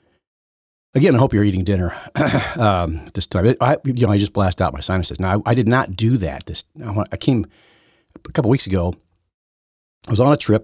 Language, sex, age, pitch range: English, male, 40-59, 80-110 Hz